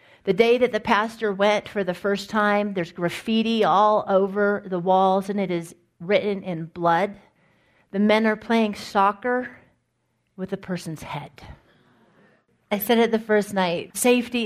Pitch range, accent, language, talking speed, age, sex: 195-245 Hz, American, English, 160 wpm, 40-59, female